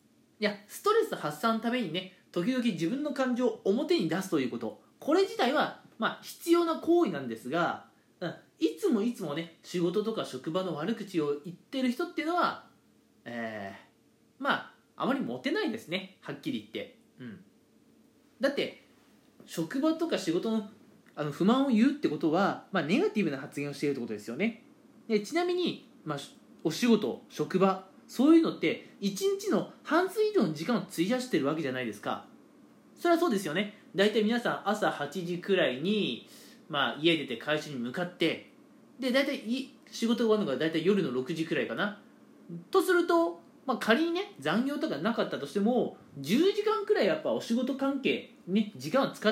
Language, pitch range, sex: Japanese, 190-295 Hz, male